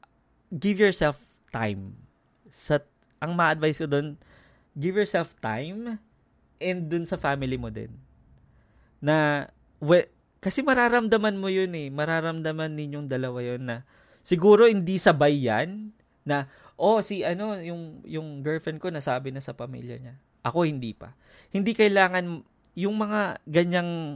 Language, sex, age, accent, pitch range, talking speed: Filipino, male, 20-39, native, 120-170 Hz, 135 wpm